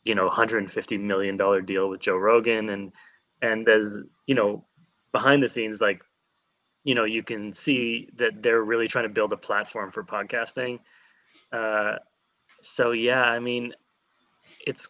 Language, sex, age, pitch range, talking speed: English, male, 20-39, 100-130 Hz, 155 wpm